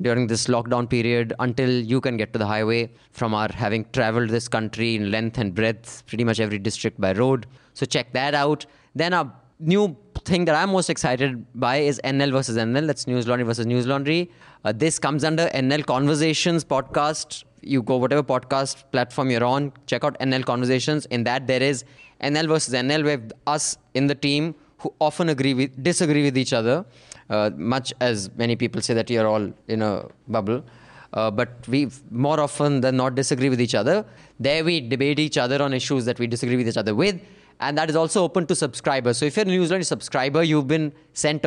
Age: 20-39